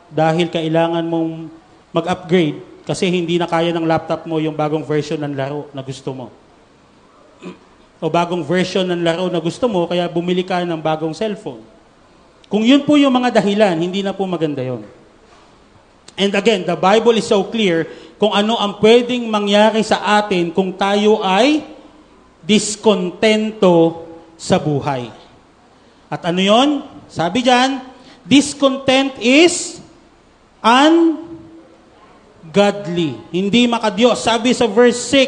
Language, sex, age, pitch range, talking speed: Filipino, male, 40-59, 175-255 Hz, 130 wpm